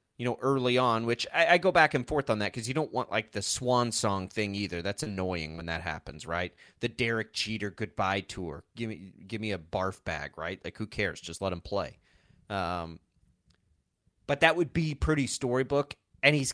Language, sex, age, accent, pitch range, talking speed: English, male, 30-49, American, 95-145 Hz, 210 wpm